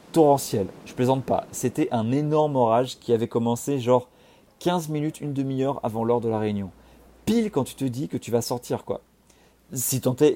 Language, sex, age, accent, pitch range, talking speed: French, male, 40-59, French, 110-135 Hz, 190 wpm